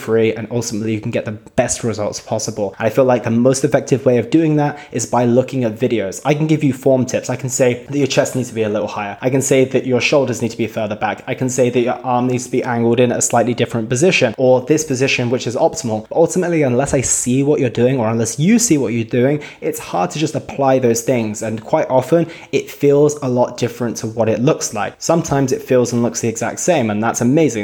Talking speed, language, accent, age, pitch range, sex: 260 wpm, English, British, 20-39, 115-135 Hz, male